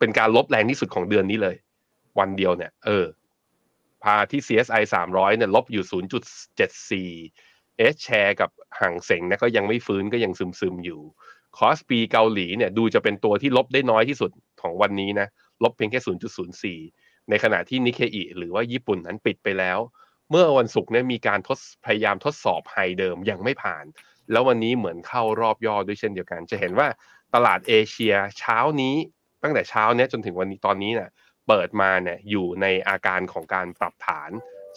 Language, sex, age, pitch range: Thai, male, 20-39, 95-120 Hz